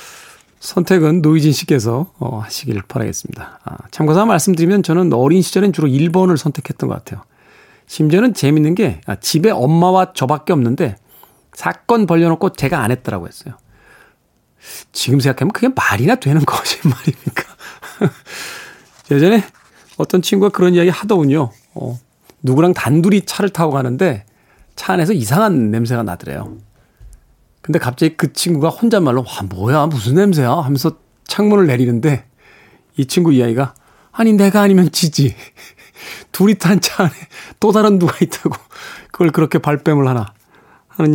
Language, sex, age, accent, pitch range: Korean, male, 40-59, native, 125-180 Hz